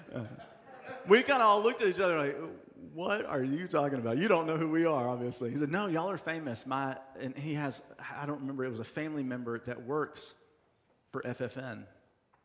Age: 40-59